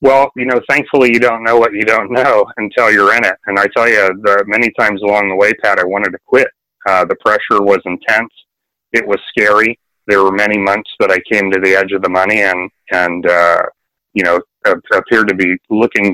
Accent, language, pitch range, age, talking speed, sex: American, English, 95-115 Hz, 30-49, 225 wpm, male